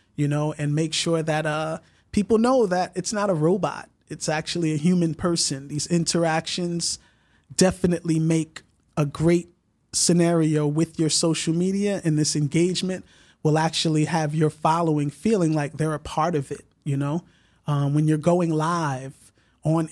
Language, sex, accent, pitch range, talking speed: English, male, American, 150-180 Hz, 160 wpm